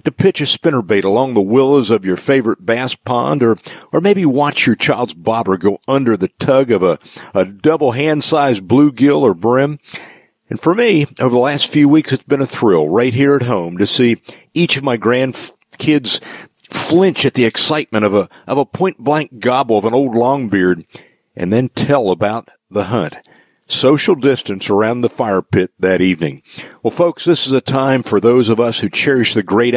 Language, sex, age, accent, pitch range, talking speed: English, male, 50-69, American, 105-140 Hz, 190 wpm